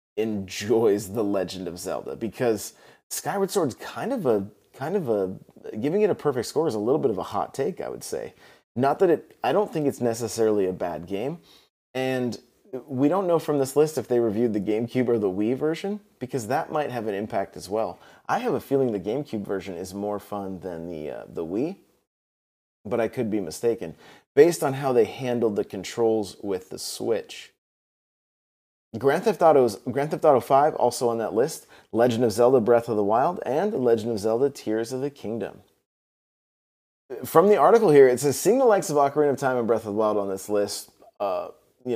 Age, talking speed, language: 30-49, 205 wpm, English